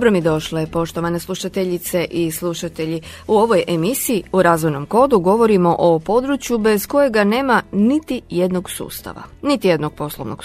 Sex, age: female, 30-49